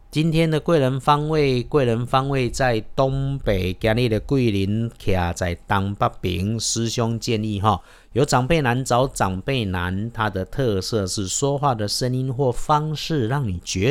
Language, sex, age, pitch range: Chinese, male, 50-69, 100-140 Hz